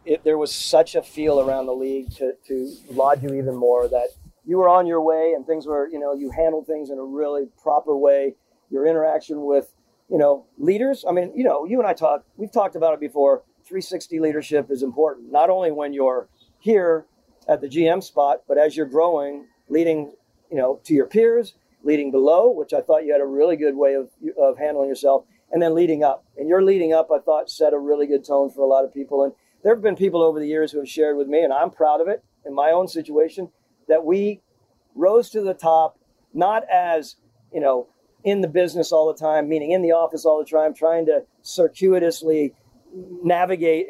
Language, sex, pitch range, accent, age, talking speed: English, male, 140-170 Hz, American, 50-69, 220 wpm